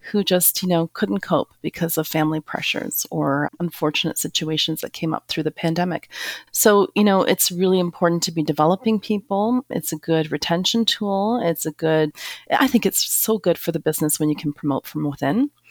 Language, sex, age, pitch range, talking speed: English, female, 30-49, 155-185 Hz, 195 wpm